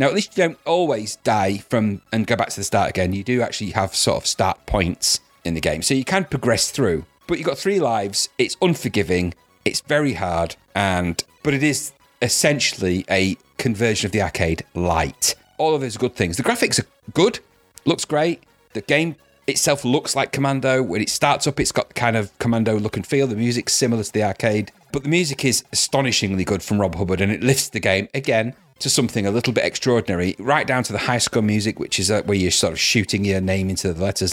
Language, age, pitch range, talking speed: English, 40-59, 100-135 Hz, 225 wpm